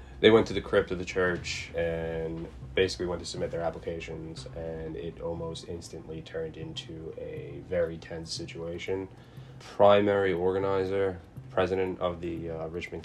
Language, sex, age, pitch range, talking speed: English, male, 20-39, 80-95 Hz, 145 wpm